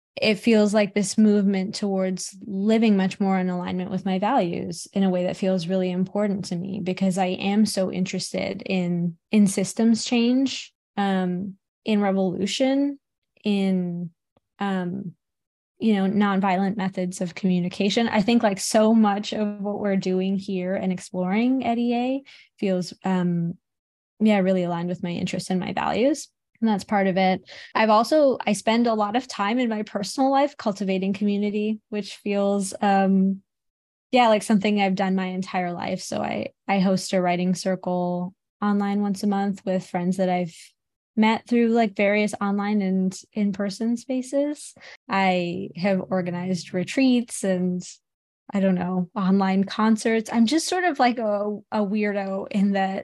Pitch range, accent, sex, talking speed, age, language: 185-215 Hz, American, female, 160 wpm, 10-29, English